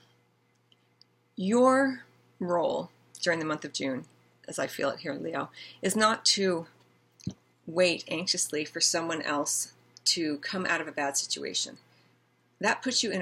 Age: 40-59